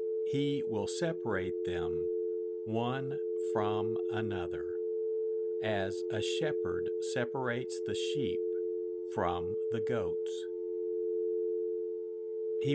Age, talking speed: 50-69, 80 wpm